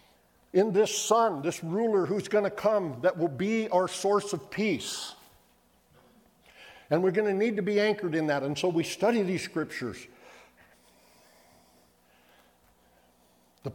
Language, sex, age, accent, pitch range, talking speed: English, male, 50-69, American, 155-210 Hz, 145 wpm